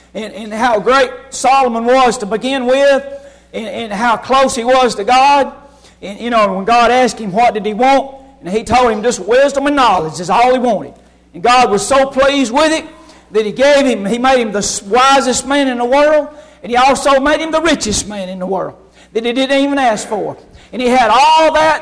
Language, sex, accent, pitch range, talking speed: English, male, American, 235-275 Hz, 225 wpm